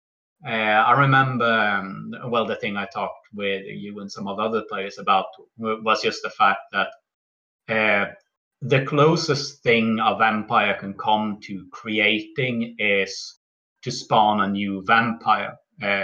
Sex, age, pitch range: male, 30-49, 100-115 Hz